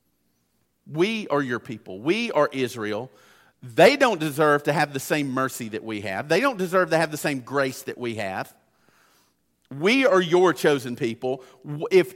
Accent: American